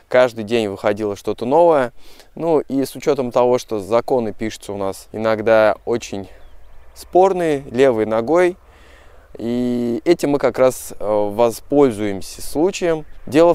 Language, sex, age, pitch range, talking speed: Russian, male, 20-39, 110-145 Hz, 125 wpm